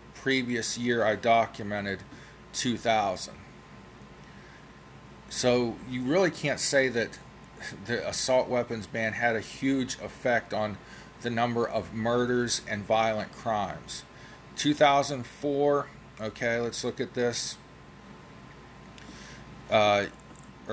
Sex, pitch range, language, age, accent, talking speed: male, 110-130 Hz, English, 40-59, American, 100 wpm